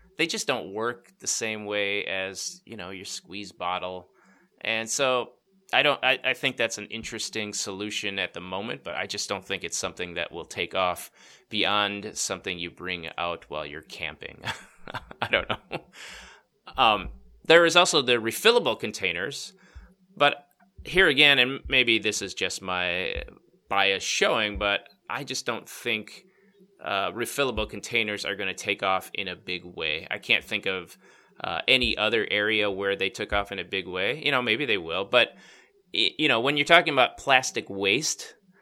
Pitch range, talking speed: 100-135 Hz, 175 wpm